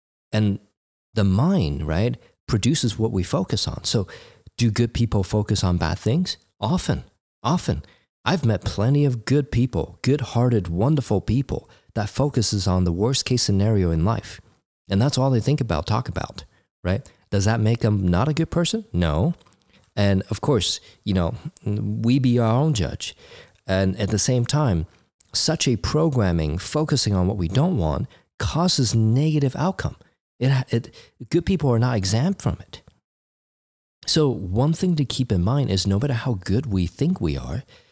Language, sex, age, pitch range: English, male, 40-59, 95-125 Hz